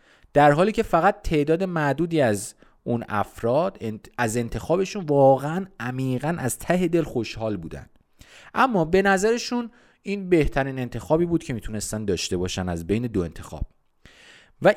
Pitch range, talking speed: 110-175 Hz, 140 wpm